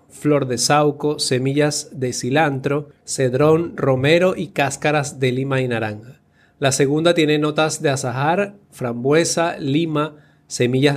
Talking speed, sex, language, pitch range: 125 wpm, male, Spanish, 130-155 Hz